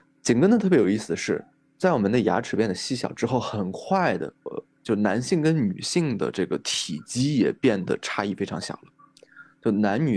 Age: 20-39